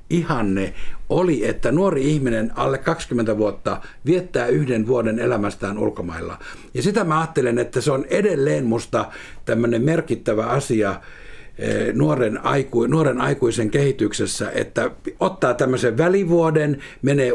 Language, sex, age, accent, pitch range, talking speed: Finnish, male, 60-79, native, 115-160 Hz, 120 wpm